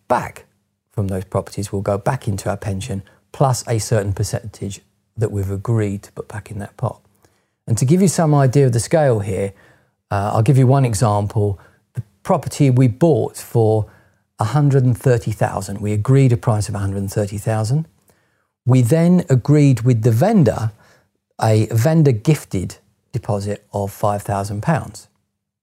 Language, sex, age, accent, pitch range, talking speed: English, male, 40-59, British, 105-125 Hz, 145 wpm